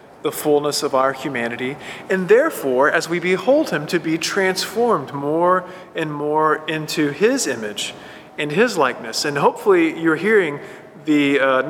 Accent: American